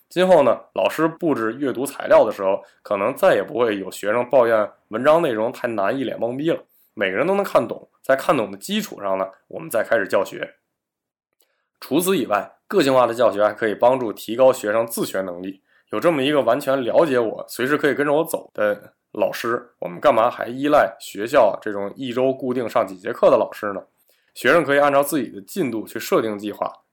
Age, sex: 20-39, male